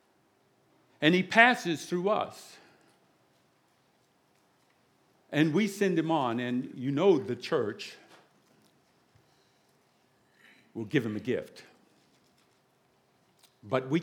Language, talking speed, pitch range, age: English, 95 wpm, 115-165 Hz, 60-79